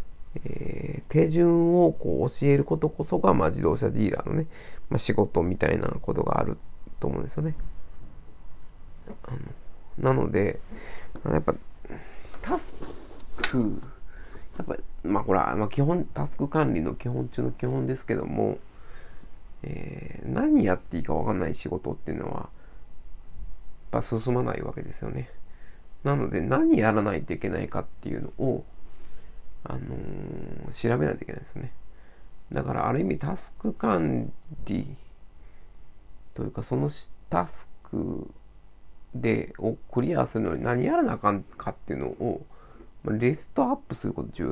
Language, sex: Japanese, male